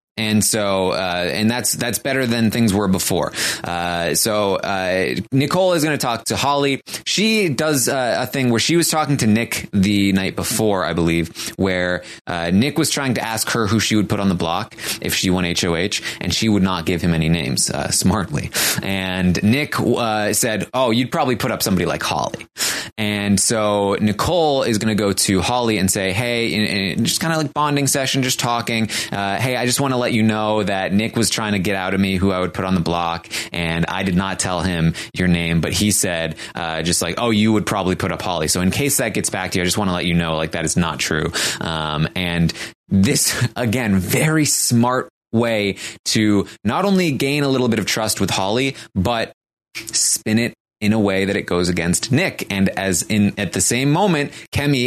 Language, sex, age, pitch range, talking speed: English, male, 20-39, 95-120 Hz, 220 wpm